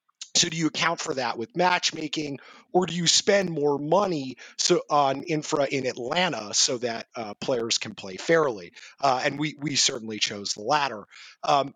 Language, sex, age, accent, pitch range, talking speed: English, male, 30-49, American, 125-165 Hz, 180 wpm